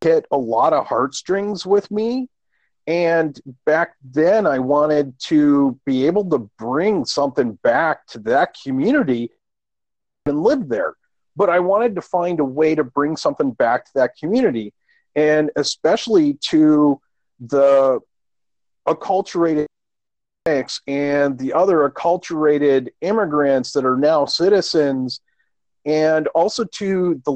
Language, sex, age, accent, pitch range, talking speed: English, male, 40-59, American, 135-175 Hz, 125 wpm